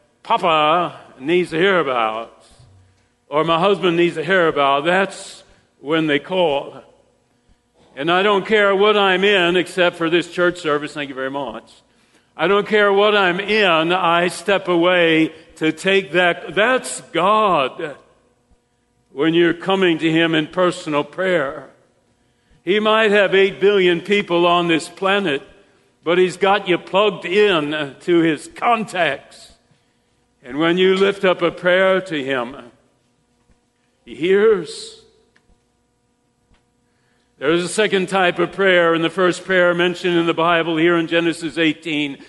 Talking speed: 145 wpm